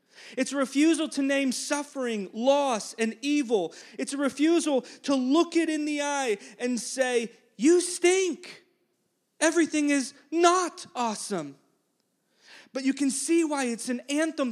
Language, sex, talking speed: English, male, 140 wpm